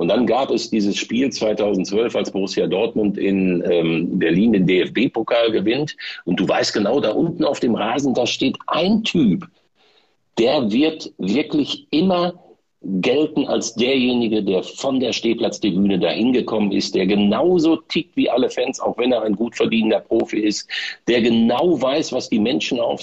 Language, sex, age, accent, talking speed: German, male, 60-79, German, 170 wpm